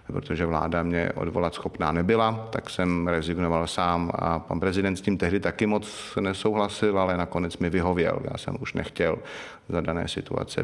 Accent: native